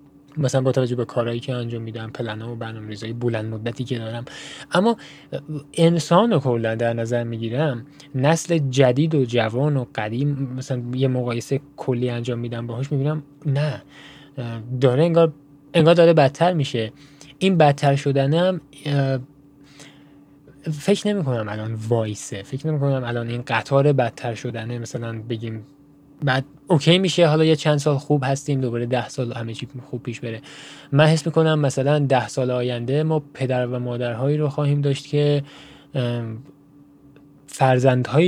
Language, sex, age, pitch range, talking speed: Persian, male, 10-29, 120-145 Hz, 145 wpm